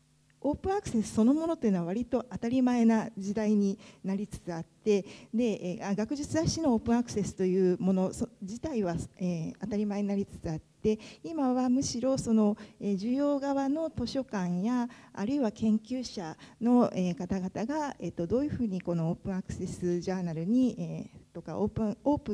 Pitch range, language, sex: 185-245 Hz, Japanese, female